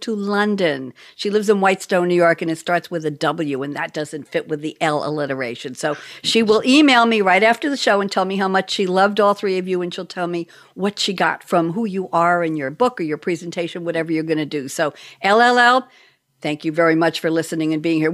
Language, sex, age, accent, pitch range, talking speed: English, female, 60-79, American, 165-215 Hz, 245 wpm